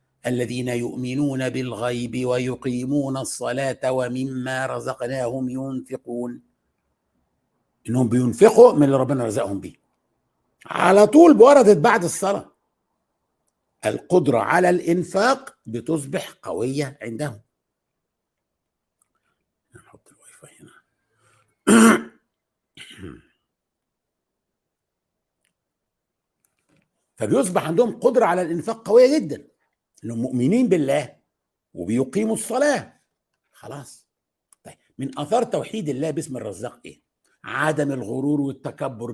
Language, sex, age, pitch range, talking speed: Arabic, male, 60-79, 120-150 Hz, 85 wpm